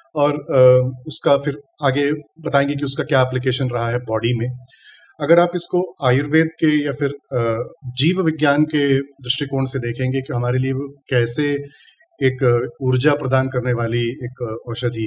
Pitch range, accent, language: 125-160 Hz, native, Hindi